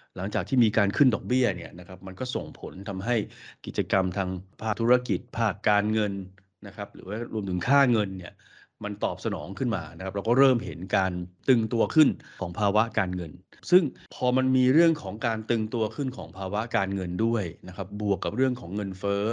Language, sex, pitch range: Thai, male, 95-120 Hz